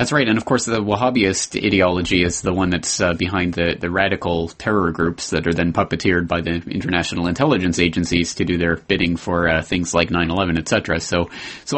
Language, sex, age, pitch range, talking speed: English, male, 30-49, 90-115 Hz, 205 wpm